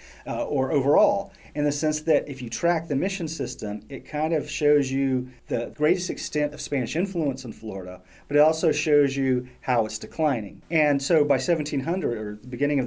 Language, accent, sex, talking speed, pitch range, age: English, American, male, 195 wpm, 120-150 Hz, 40-59